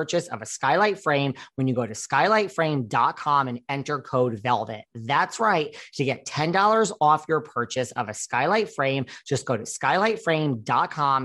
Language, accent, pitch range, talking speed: English, American, 125-165 Hz, 160 wpm